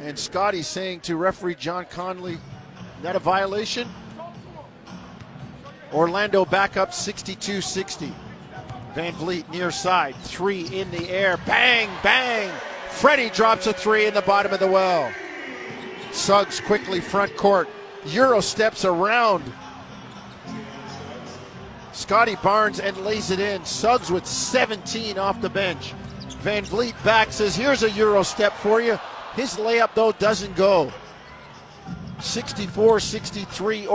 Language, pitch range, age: English, 180-210 Hz, 50-69